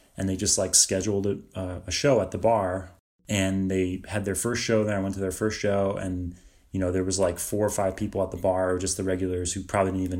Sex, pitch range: male, 95-105 Hz